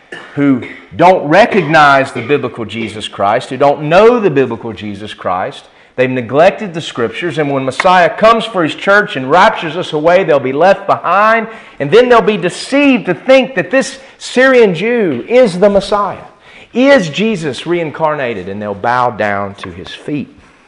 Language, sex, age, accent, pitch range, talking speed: English, male, 40-59, American, 115-180 Hz, 165 wpm